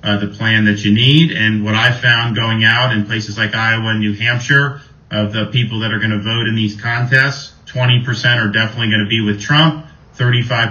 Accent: American